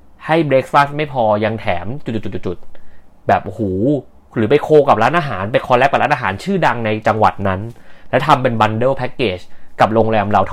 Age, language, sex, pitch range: 30-49, Thai, male, 100-140 Hz